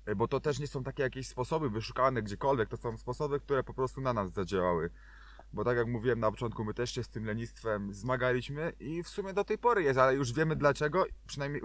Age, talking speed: 20-39, 225 wpm